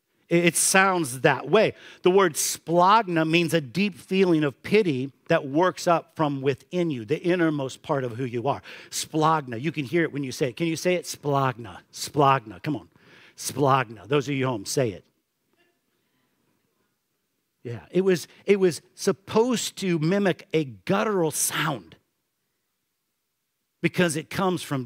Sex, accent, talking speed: male, American, 155 wpm